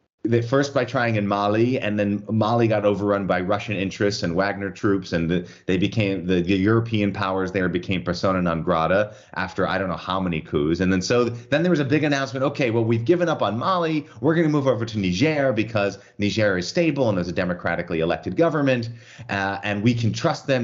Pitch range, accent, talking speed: 90-120 Hz, American, 215 wpm